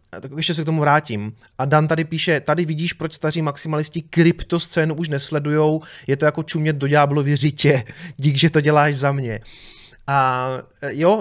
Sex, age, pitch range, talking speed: male, 30-49, 150-180 Hz, 175 wpm